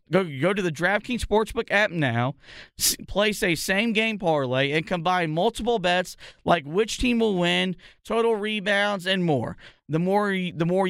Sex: male